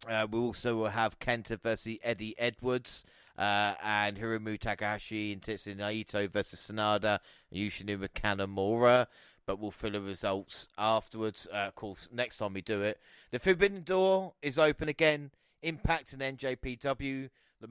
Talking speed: 150 wpm